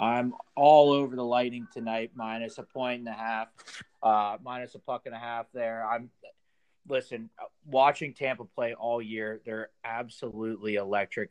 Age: 30-49